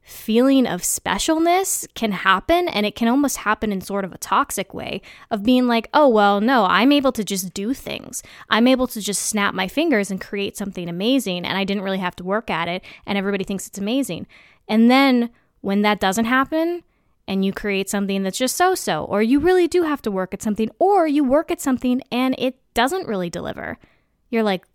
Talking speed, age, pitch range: 210 wpm, 20-39, 190-265 Hz